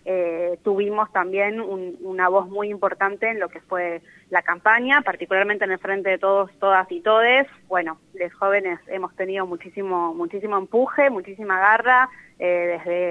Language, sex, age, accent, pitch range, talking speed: Spanish, female, 20-39, Argentinian, 175-205 Hz, 160 wpm